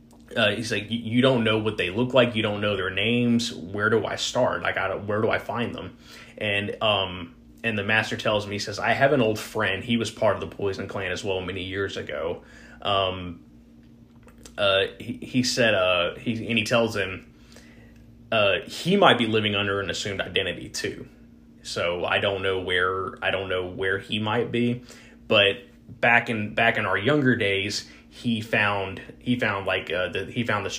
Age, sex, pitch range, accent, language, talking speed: 20-39, male, 100-120 Hz, American, English, 205 wpm